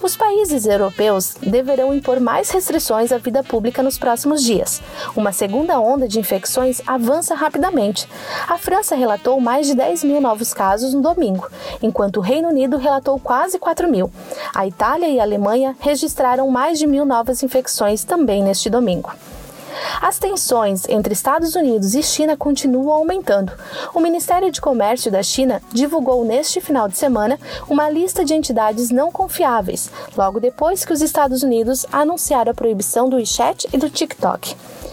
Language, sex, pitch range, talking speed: Portuguese, female, 220-300 Hz, 160 wpm